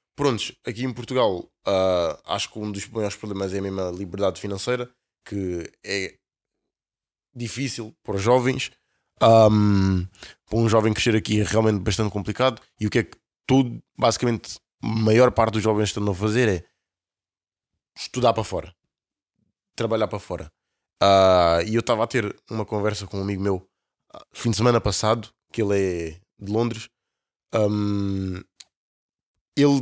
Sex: male